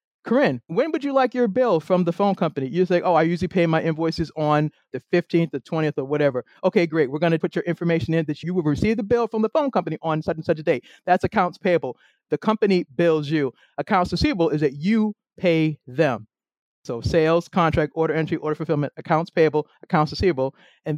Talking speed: 220 wpm